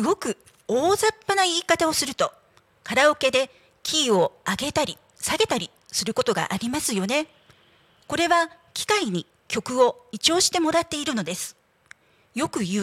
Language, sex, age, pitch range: Japanese, female, 40-59, 230-335 Hz